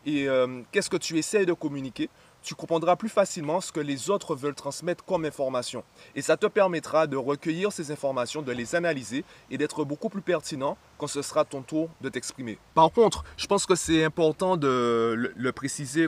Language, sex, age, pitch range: French, male, 20-39, 130-170 Hz